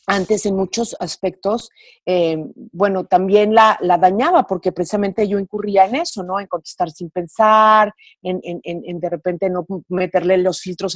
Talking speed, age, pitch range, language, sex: 165 wpm, 40-59, 185-245 Hz, Spanish, female